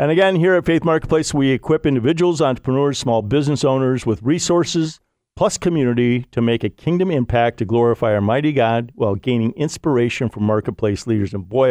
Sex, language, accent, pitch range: male, English, American, 115-150 Hz